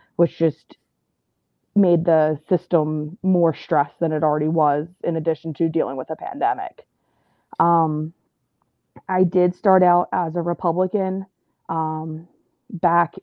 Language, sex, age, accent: English, female, 20-39, American